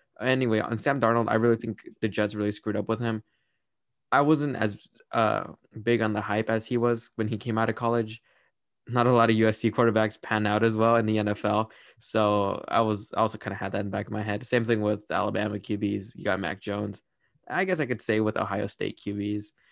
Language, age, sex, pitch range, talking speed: English, 20-39, male, 105-115 Hz, 235 wpm